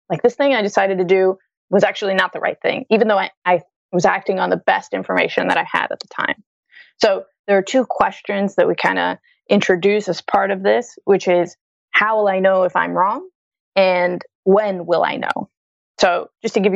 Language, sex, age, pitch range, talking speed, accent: English, female, 20-39, 190-235 Hz, 220 wpm, American